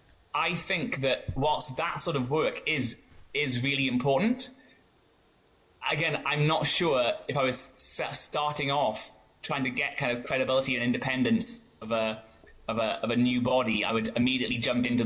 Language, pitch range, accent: English, 115-140 Hz, British